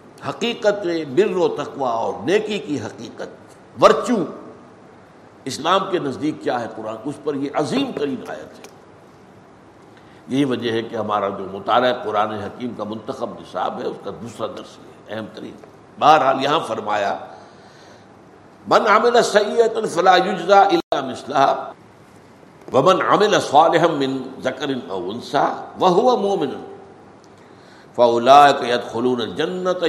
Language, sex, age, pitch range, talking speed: Urdu, male, 60-79, 125-170 Hz, 110 wpm